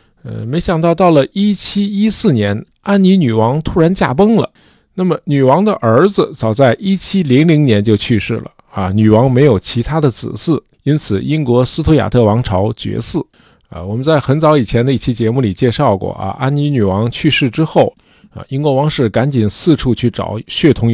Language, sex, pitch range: Chinese, male, 110-145 Hz